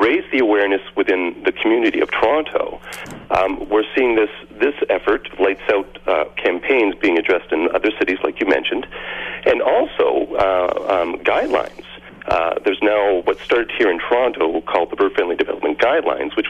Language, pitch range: English, 350-445 Hz